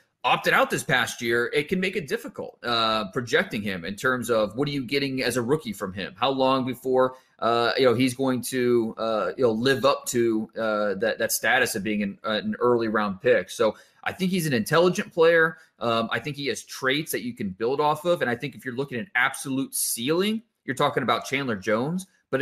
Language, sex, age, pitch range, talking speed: English, male, 30-49, 115-155 Hz, 230 wpm